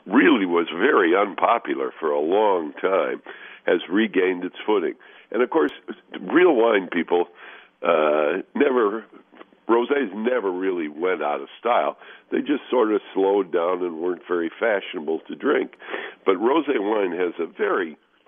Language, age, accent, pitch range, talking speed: English, 60-79, American, 315-420 Hz, 150 wpm